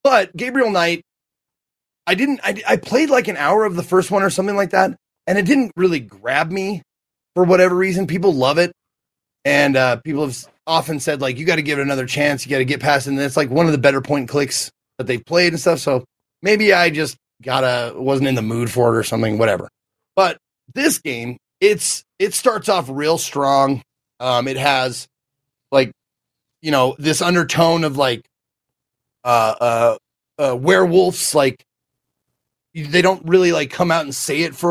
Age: 30-49